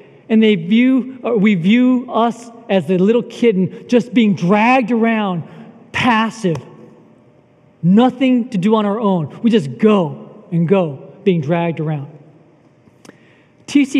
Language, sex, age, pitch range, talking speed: English, male, 40-59, 150-195 Hz, 135 wpm